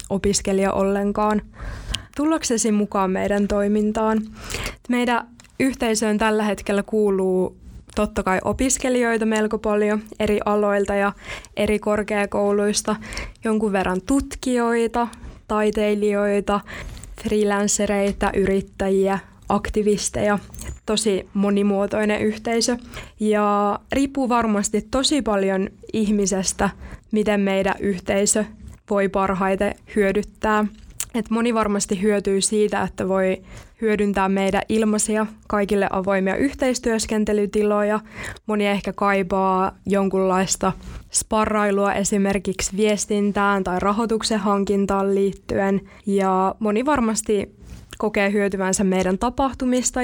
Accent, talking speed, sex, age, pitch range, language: native, 85 wpm, female, 20-39, 195-215 Hz, Finnish